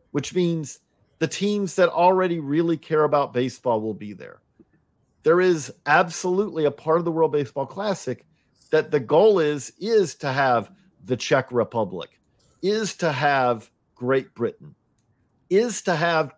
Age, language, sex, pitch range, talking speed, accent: 50-69, English, male, 135-175 Hz, 150 wpm, American